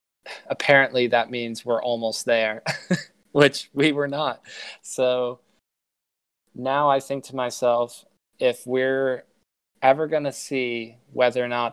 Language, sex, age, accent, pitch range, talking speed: English, male, 20-39, American, 115-135 Hz, 125 wpm